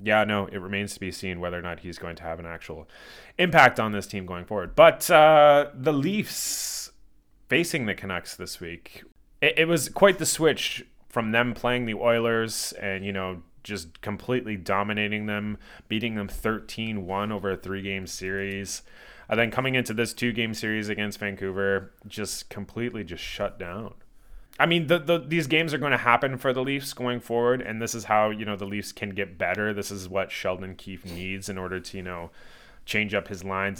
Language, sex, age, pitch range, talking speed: English, male, 20-39, 95-115 Hz, 195 wpm